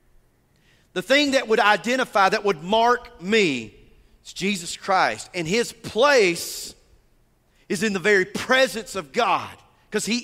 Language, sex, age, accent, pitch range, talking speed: English, male, 40-59, American, 150-225 Hz, 140 wpm